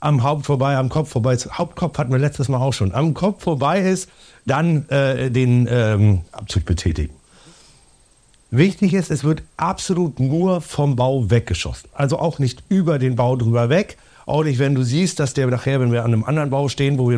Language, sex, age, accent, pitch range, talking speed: German, male, 50-69, German, 125-160 Hz, 205 wpm